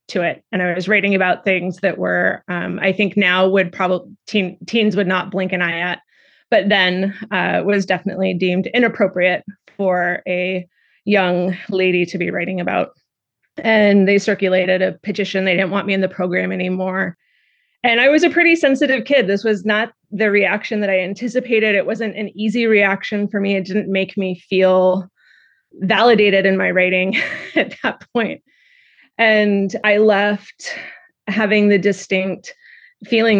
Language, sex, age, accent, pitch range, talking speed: English, female, 20-39, American, 185-220 Hz, 165 wpm